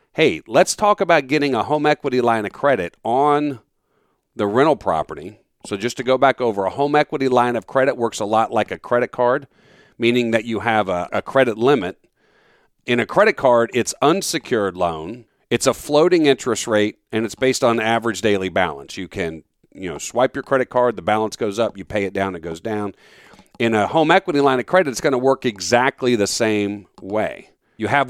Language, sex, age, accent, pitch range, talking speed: English, male, 40-59, American, 110-140 Hz, 205 wpm